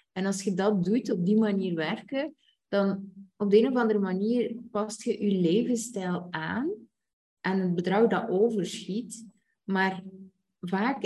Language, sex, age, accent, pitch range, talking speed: Dutch, female, 20-39, Dutch, 185-220 Hz, 150 wpm